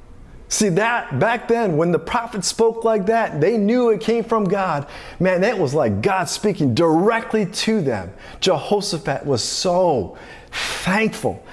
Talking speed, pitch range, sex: 150 wpm, 155-210 Hz, male